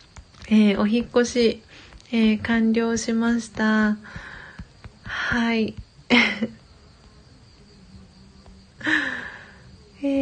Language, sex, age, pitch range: Japanese, female, 40-59, 185-225 Hz